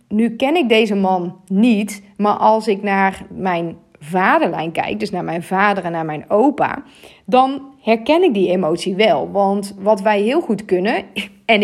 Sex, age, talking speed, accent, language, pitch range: female, 30-49, 175 wpm, Dutch, Dutch, 190-245 Hz